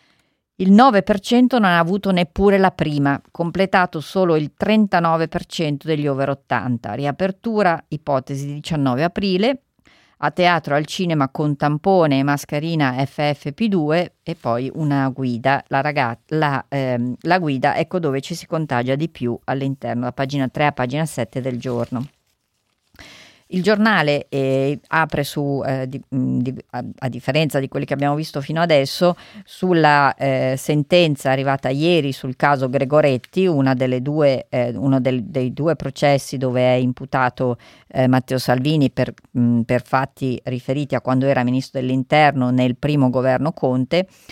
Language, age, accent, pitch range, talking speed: Italian, 40-59, native, 130-170 Hz, 150 wpm